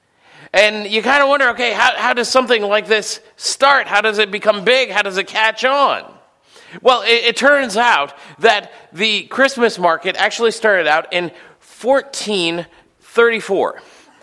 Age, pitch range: 40-59, 185-230 Hz